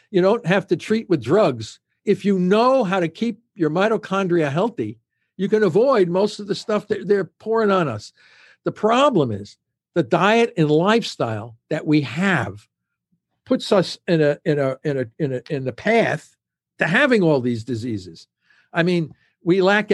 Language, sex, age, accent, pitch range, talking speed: English, male, 60-79, American, 165-215 Hz, 180 wpm